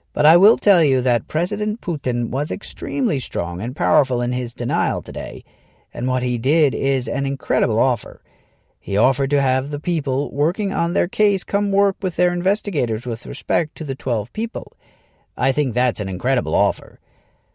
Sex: male